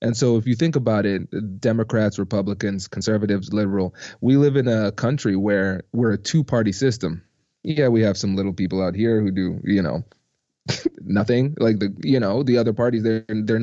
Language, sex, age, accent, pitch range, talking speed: English, male, 20-39, American, 105-130 Hz, 200 wpm